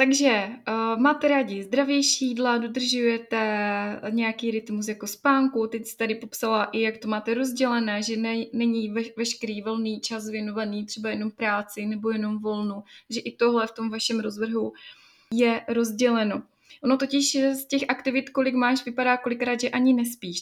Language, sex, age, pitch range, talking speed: Czech, female, 20-39, 225-260 Hz, 160 wpm